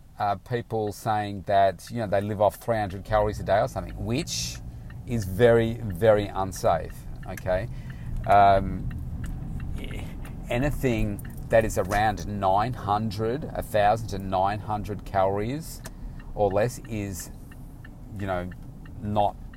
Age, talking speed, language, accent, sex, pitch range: 40-59, 130 wpm, English, Australian, male, 100-125 Hz